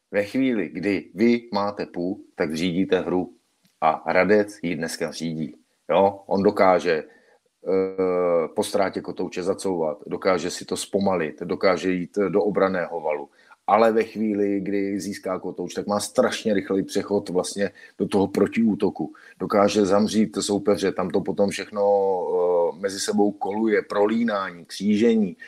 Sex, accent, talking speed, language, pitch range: male, native, 140 wpm, Czech, 100-115 Hz